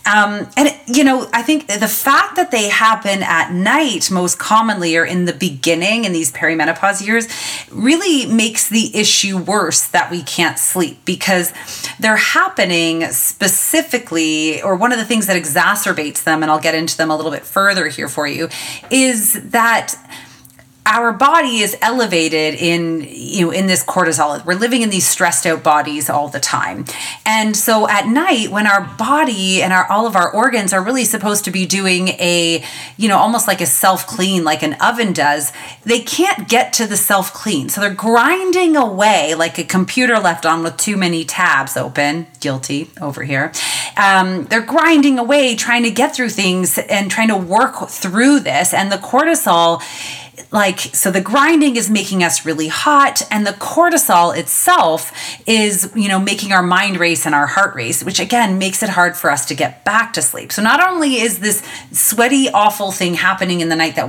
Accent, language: American, English